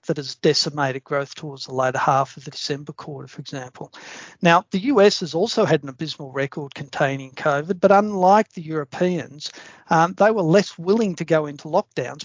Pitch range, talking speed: 145-180 Hz, 185 wpm